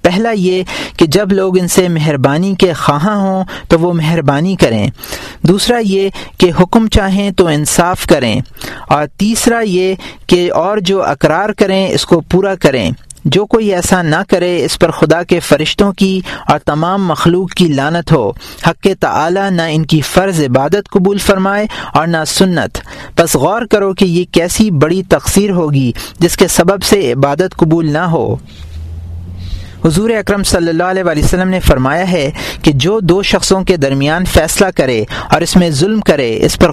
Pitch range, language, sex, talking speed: 150-190 Hz, Urdu, male, 170 wpm